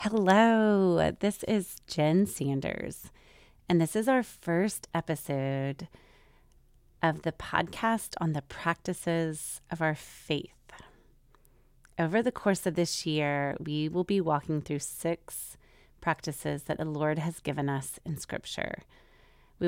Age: 30-49